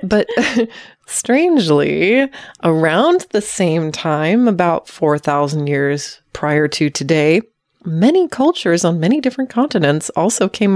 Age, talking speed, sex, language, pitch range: 30-49, 110 wpm, female, English, 155-225 Hz